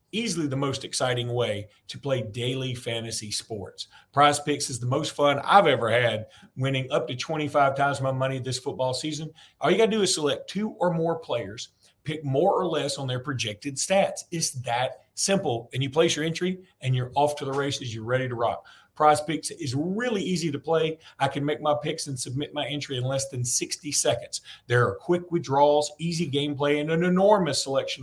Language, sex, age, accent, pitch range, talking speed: English, male, 40-59, American, 130-160 Hz, 205 wpm